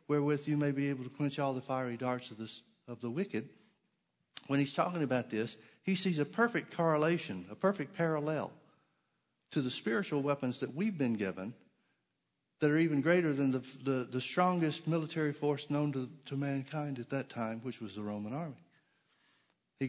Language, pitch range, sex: English, 130-150 Hz, male